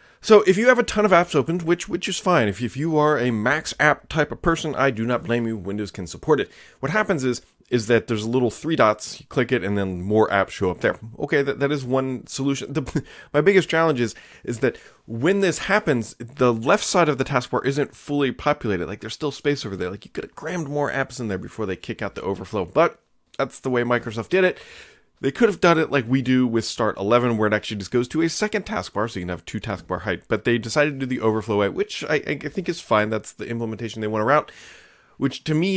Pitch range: 110-145 Hz